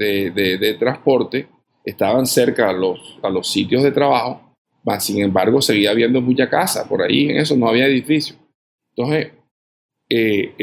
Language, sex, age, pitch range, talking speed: Spanish, male, 50-69, 105-140 Hz, 165 wpm